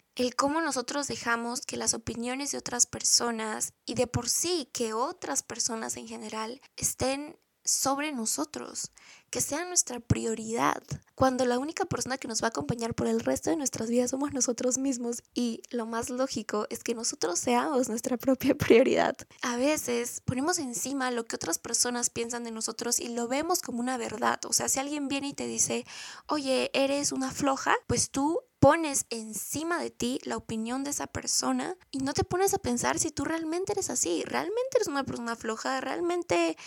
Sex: female